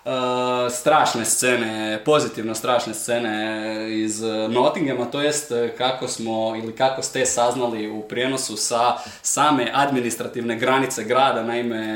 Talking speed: 120 wpm